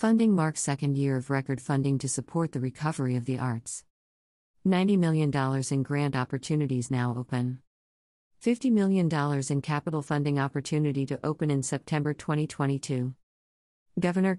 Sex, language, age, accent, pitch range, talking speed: female, English, 50-69, American, 130-160 Hz, 140 wpm